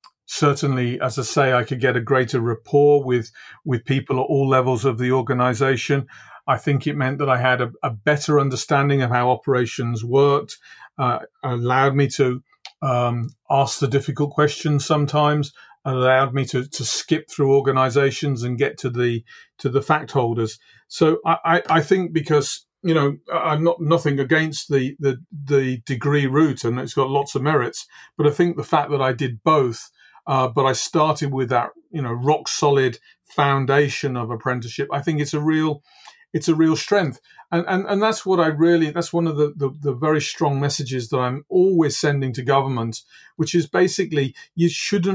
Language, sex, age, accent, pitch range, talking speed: English, male, 40-59, British, 130-155 Hz, 190 wpm